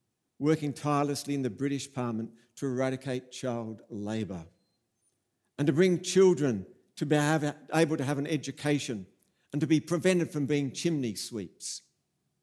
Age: 50-69